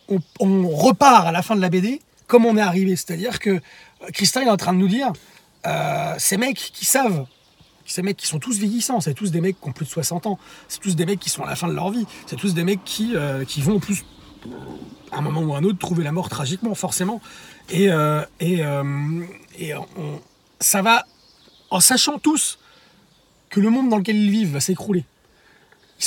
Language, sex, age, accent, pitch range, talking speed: French, male, 30-49, French, 155-200 Hz, 225 wpm